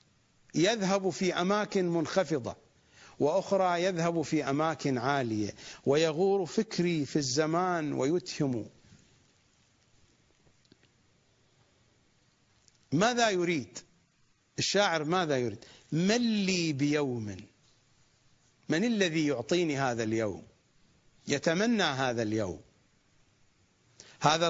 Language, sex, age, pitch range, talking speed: English, male, 50-69, 125-190 Hz, 75 wpm